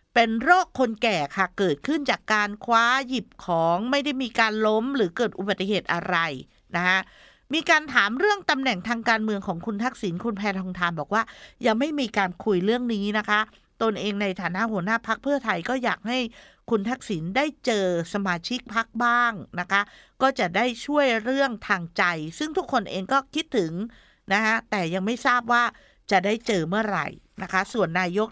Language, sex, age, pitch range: Thai, female, 60-79, 185-245 Hz